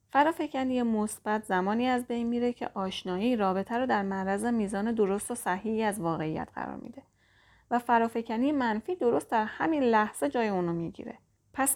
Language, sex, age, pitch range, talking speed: Persian, female, 30-49, 190-240 Hz, 160 wpm